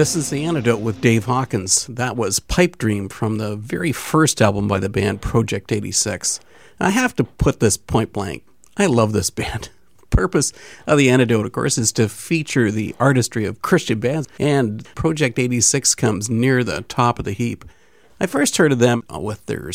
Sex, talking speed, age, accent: male, 195 wpm, 50-69, American